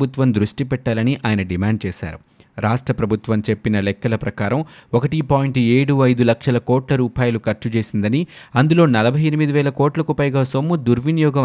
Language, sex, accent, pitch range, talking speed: Telugu, male, native, 110-135 Hz, 145 wpm